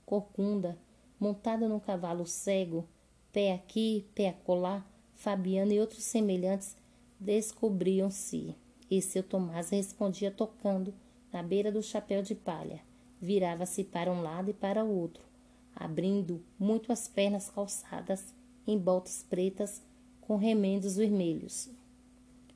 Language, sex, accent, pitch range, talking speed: Portuguese, female, Brazilian, 180-205 Hz, 115 wpm